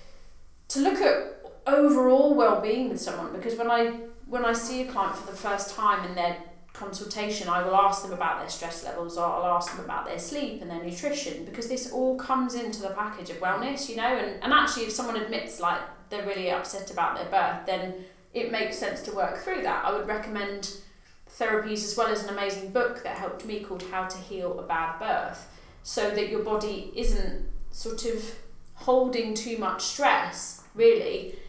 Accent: British